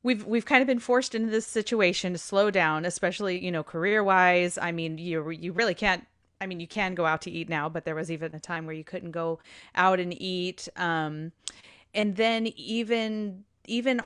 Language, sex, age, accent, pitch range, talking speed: English, female, 30-49, American, 170-205 Hz, 215 wpm